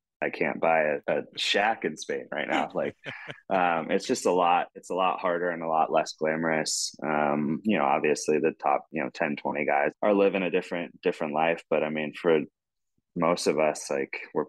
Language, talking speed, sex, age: English, 210 wpm, male, 20-39